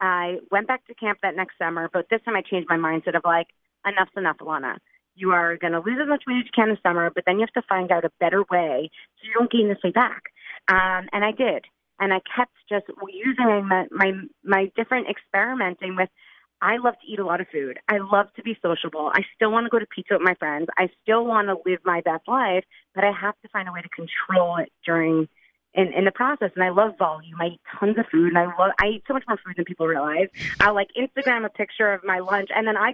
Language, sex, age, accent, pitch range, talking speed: English, female, 30-49, American, 180-220 Hz, 255 wpm